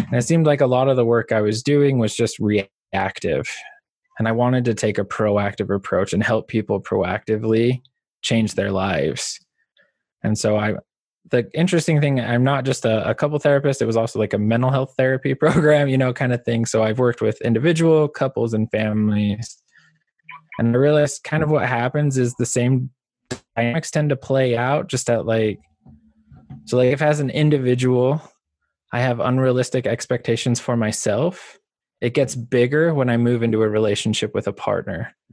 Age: 20-39